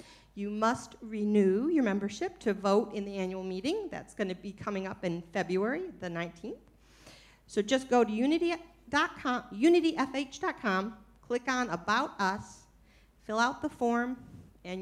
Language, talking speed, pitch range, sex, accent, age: English, 140 wpm, 195-260 Hz, female, American, 50-69